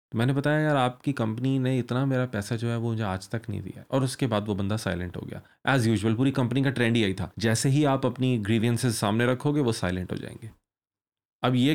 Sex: male